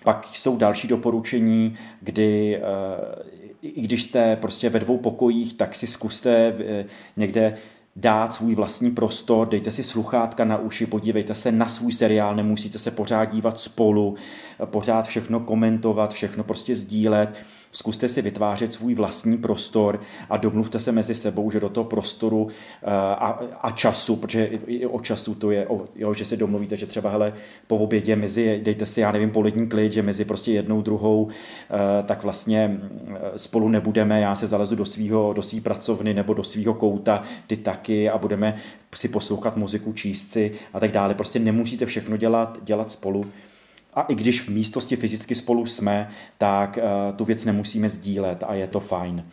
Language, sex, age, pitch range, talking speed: Czech, male, 30-49, 105-115 Hz, 165 wpm